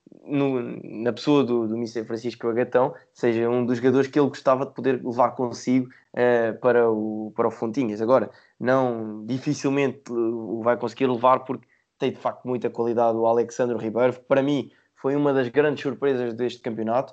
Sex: male